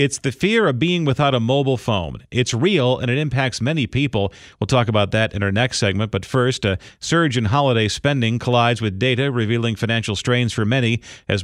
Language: English